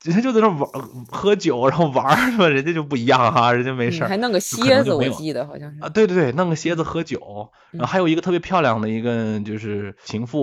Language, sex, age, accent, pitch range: Chinese, male, 20-39, native, 105-150 Hz